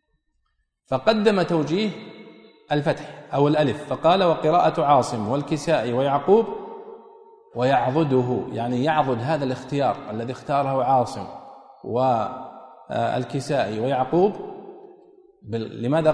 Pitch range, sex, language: 125-195 Hz, male, Arabic